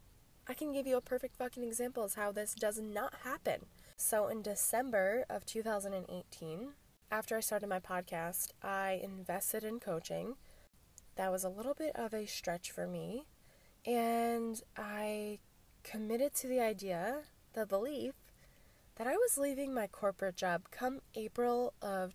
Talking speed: 150 wpm